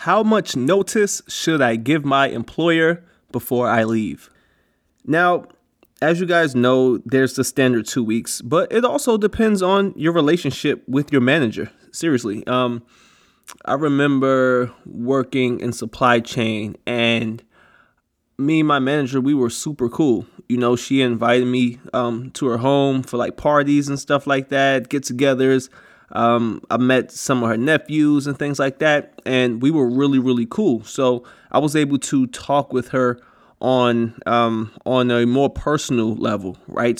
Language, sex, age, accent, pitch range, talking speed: English, male, 20-39, American, 120-145 Hz, 160 wpm